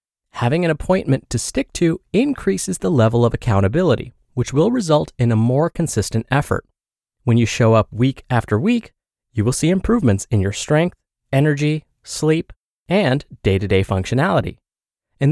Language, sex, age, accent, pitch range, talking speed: English, male, 20-39, American, 115-175 Hz, 155 wpm